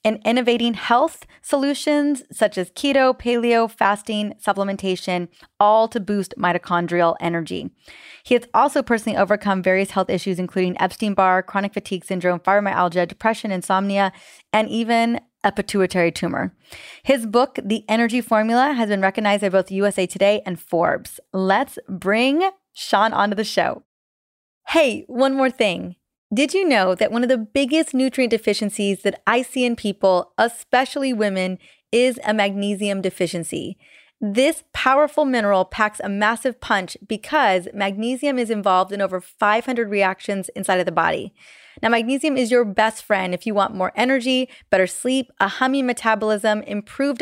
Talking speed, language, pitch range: 150 wpm, English, 190-245 Hz